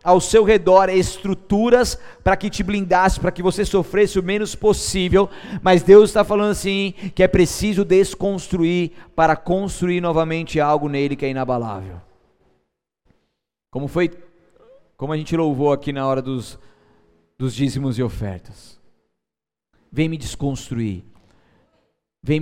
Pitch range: 120-170 Hz